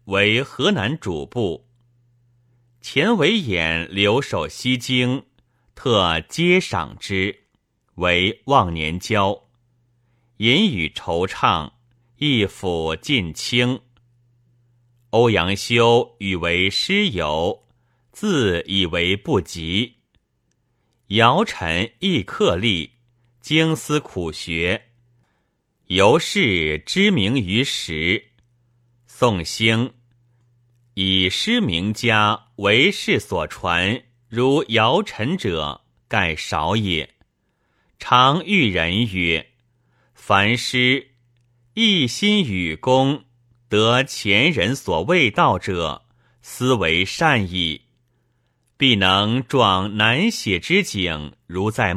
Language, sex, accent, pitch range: Chinese, male, native, 95-125 Hz